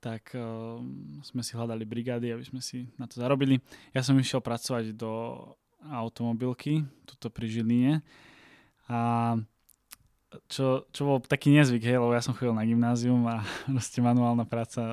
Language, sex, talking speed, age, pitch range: Slovak, male, 150 wpm, 10-29, 115-130 Hz